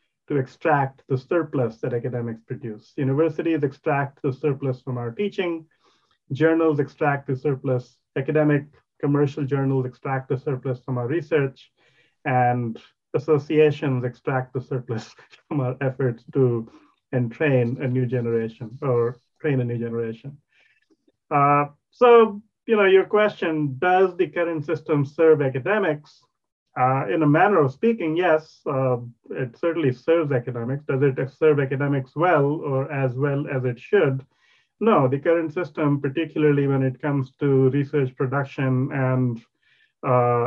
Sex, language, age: male, English, 30-49